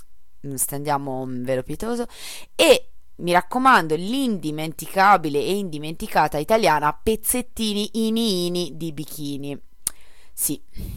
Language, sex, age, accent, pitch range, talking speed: Italian, female, 20-39, native, 145-185 Hz, 90 wpm